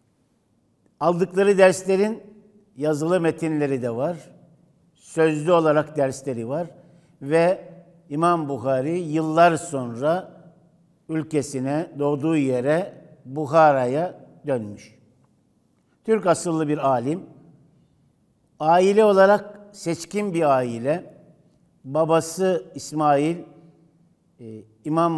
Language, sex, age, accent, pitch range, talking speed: Turkish, male, 60-79, native, 140-170 Hz, 75 wpm